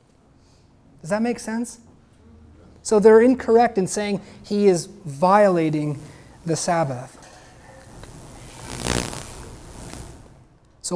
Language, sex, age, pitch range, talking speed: English, male, 30-49, 145-180 Hz, 80 wpm